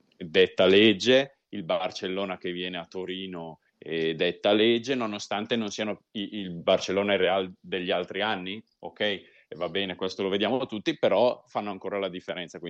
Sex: male